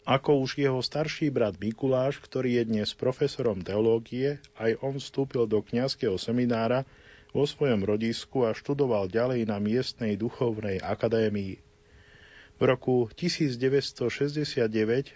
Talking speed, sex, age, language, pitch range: 120 wpm, male, 40-59, Slovak, 110-130 Hz